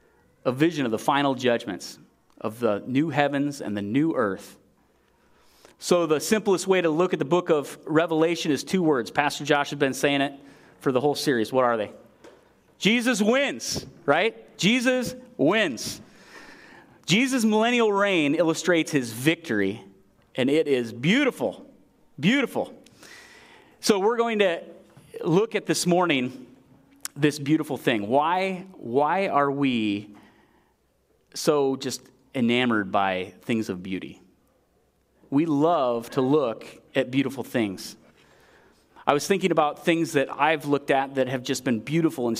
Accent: American